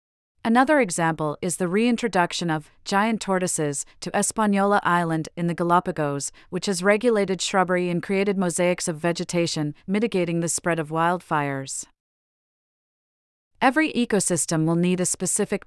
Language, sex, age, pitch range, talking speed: English, female, 40-59, 165-200 Hz, 130 wpm